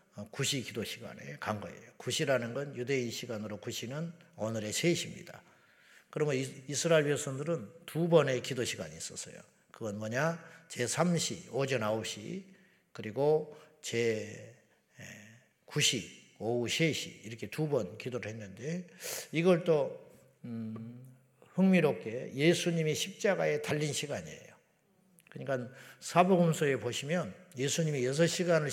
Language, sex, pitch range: Korean, male, 125-170 Hz